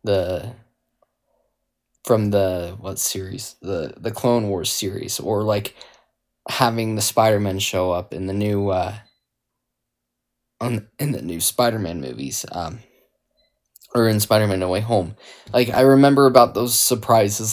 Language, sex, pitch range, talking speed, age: English, male, 100-120 Hz, 135 wpm, 10-29